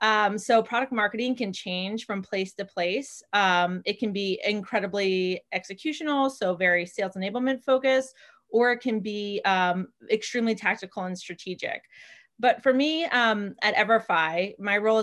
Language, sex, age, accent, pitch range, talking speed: English, female, 30-49, American, 185-220 Hz, 150 wpm